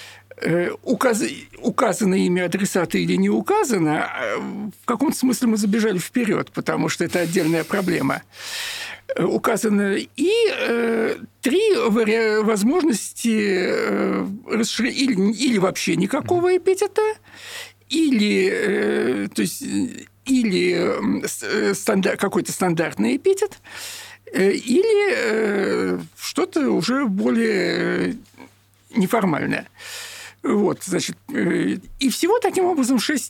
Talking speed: 95 wpm